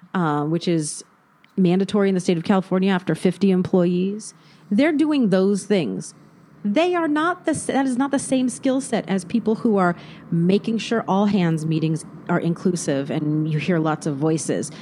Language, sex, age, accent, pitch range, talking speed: English, female, 40-59, American, 160-205 Hz, 180 wpm